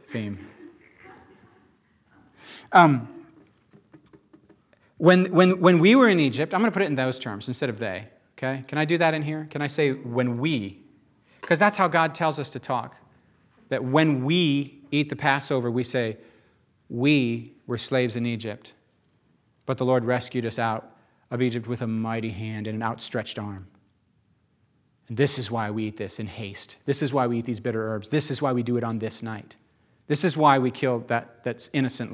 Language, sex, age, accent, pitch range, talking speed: English, male, 40-59, American, 115-150 Hz, 190 wpm